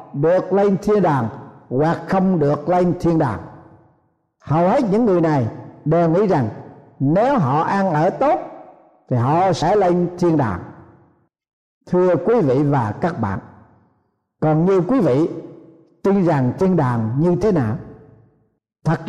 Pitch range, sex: 145-210 Hz, male